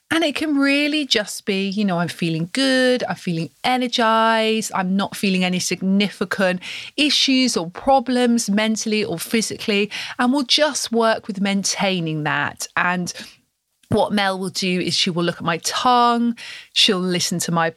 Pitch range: 175-235 Hz